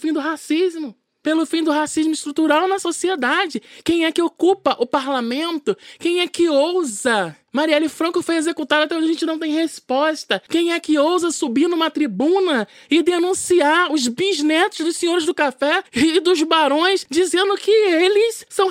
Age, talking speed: 20-39, 170 wpm